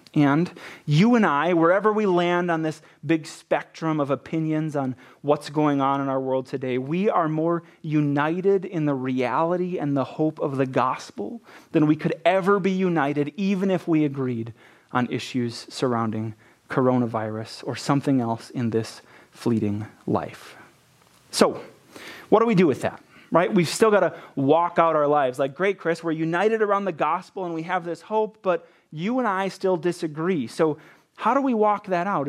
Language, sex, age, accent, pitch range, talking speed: English, male, 30-49, American, 140-190 Hz, 180 wpm